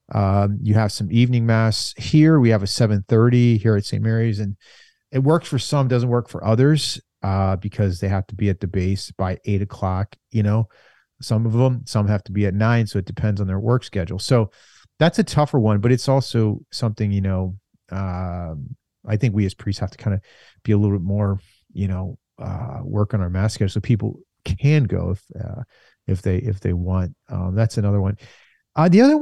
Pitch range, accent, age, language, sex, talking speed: 100-120 Hz, American, 40-59, English, male, 220 wpm